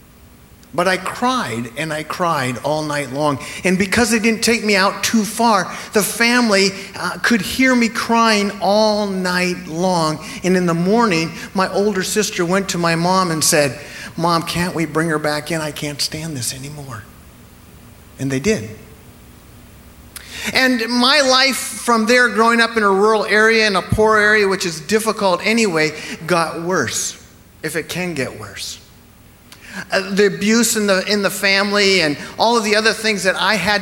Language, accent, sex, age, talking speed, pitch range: English, American, male, 50-69, 175 wpm, 160-210 Hz